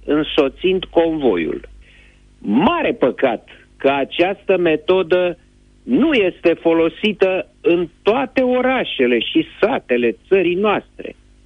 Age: 50-69